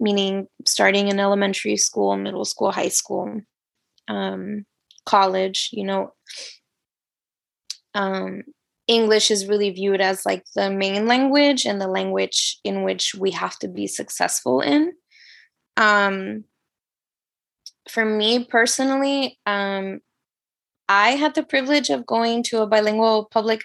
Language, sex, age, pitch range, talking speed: English, female, 20-39, 195-230 Hz, 125 wpm